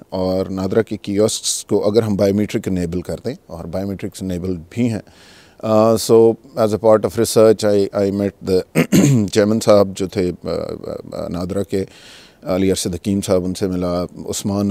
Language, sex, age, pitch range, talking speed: Urdu, male, 40-59, 95-120 Hz, 150 wpm